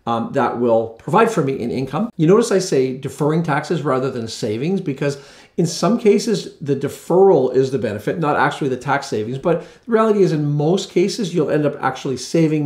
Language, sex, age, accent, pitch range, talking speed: English, male, 40-59, American, 125-160 Hz, 205 wpm